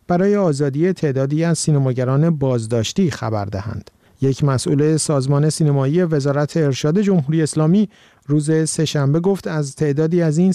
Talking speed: 130 wpm